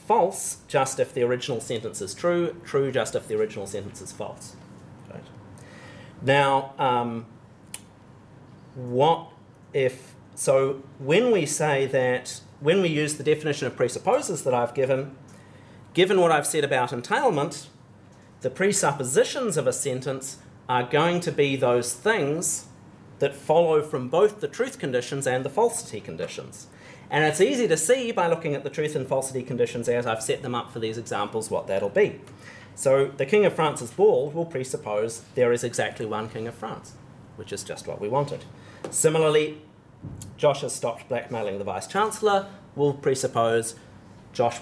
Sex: male